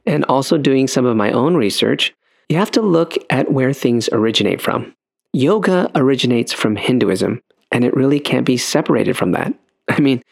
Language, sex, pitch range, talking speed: English, male, 110-135 Hz, 180 wpm